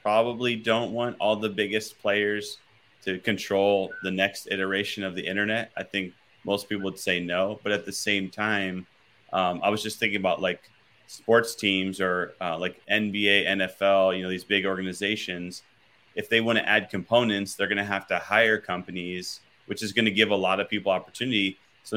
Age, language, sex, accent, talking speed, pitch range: 30-49, English, male, American, 190 wpm, 95-110 Hz